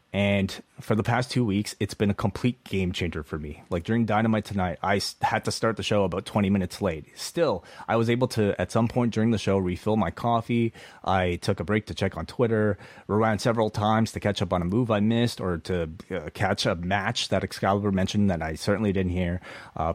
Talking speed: 230 wpm